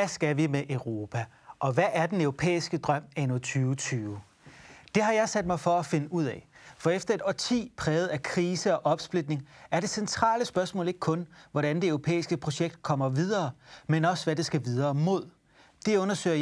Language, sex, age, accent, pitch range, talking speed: Danish, male, 30-49, native, 140-180 Hz, 195 wpm